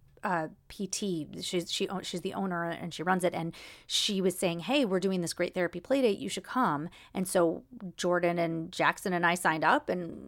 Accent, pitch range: American, 165-200 Hz